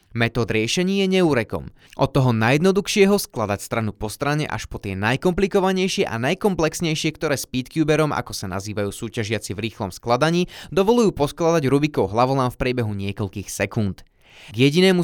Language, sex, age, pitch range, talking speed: Slovak, male, 20-39, 115-155 Hz, 145 wpm